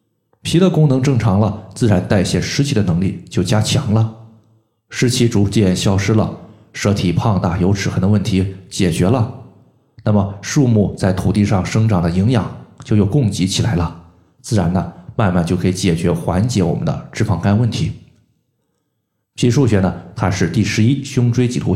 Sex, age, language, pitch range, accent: male, 20-39, Chinese, 95-120 Hz, native